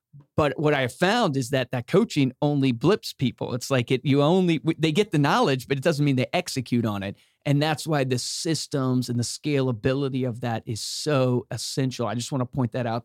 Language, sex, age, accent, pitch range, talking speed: English, male, 40-59, American, 125-150 Hz, 220 wpm